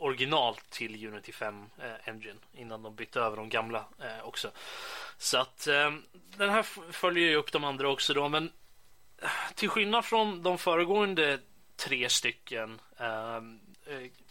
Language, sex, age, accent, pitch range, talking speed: Swedish, male, 20-39, native, 120-160 Hz, 145 wpm